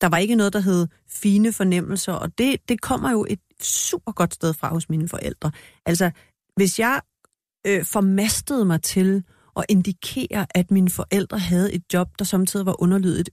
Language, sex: Danish, female